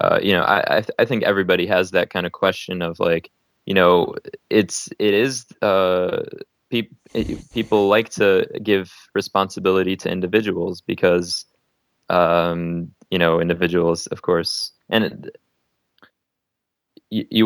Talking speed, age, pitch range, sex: 140 wpm, 20-39, 90-105 Hz, male